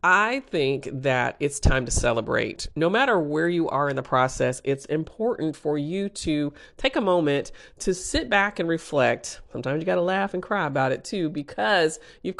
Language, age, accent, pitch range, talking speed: English, 40-59, American, 150-210 Hz, 195 wpm